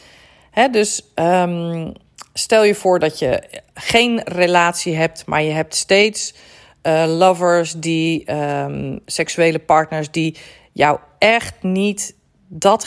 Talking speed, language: 120 wpm, Dutch